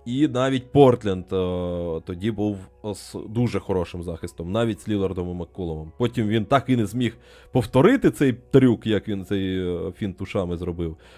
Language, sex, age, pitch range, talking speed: Ukrainian, male, 20-39, 95-125 Hz, 150 wpm